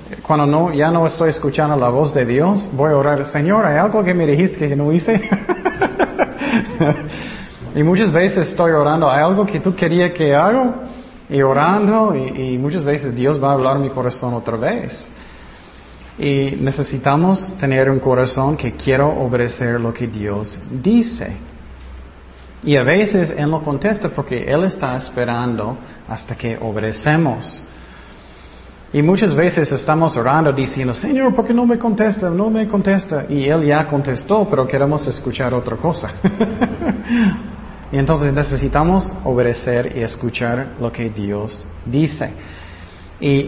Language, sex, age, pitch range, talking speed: Spanish, male, 30-49, 120-175 Hz, 150 wpm